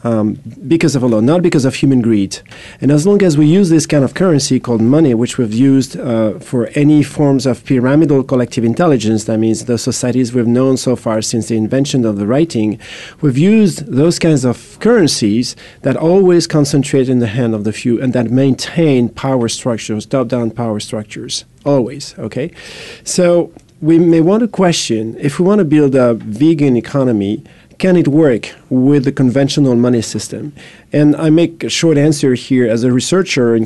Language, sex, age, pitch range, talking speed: English, male, 40-59, 120-150 Hz, 185 wpm